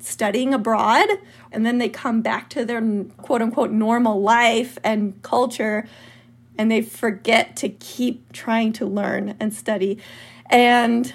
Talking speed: 140 wpm